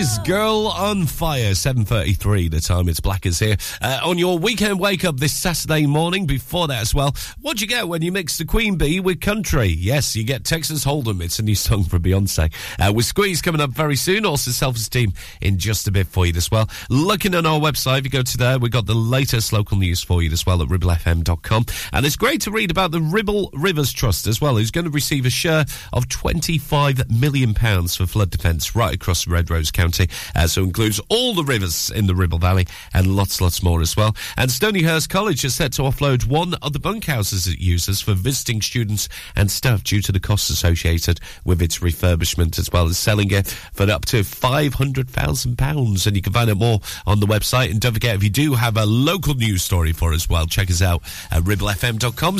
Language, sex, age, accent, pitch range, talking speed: English, male, 40-59, British, 95-150 Hz, 220 wpm